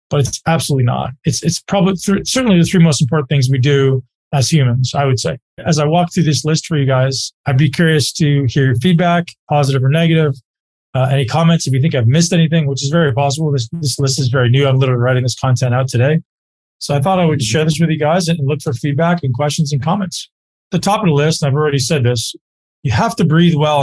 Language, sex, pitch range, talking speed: English, male, 135-165 Hz, 250 wpm